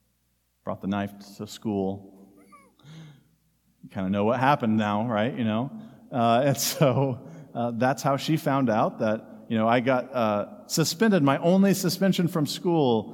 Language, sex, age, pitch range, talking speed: English, male, 40-59, 110-150 Hz, 160 wpm